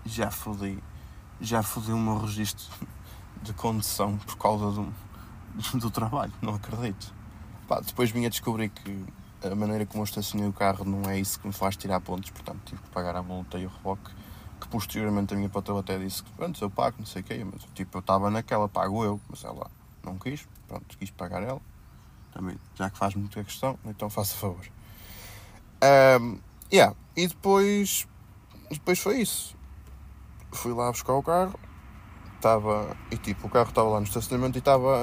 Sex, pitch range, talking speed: male, 95-115 Hz, 185 wpm